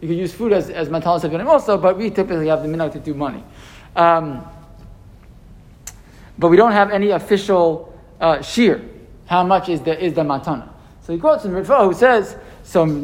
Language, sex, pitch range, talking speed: English, male, 155-195 Hz, 190 wpm